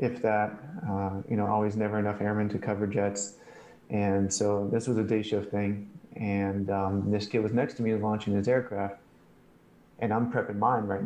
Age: 30-49